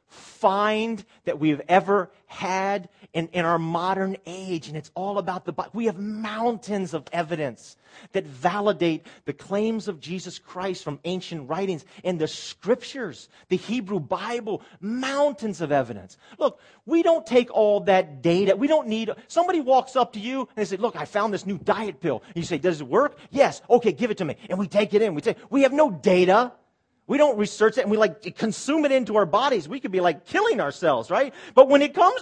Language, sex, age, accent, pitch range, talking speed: English, male, 40-59, American, 145-225 Hz, 205 wpm